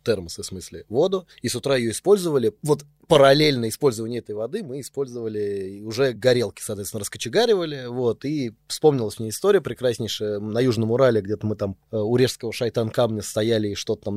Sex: male